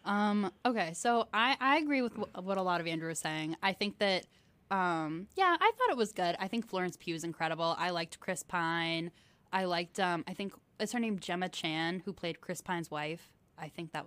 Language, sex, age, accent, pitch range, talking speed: English, female, 10-29, American, 165-210 Hz, 220 wpm